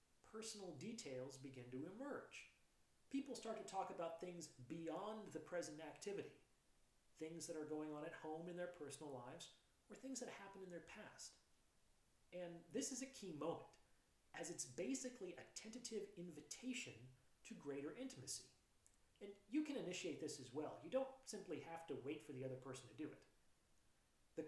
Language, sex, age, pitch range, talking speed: English, male, 40-59, 145-215 Hz, 170 wpm